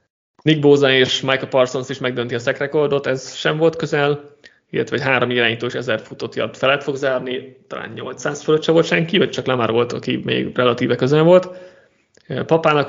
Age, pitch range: 30-49, 125-150 Hz